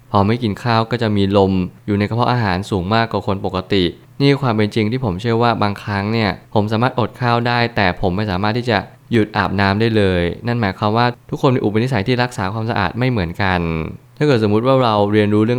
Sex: male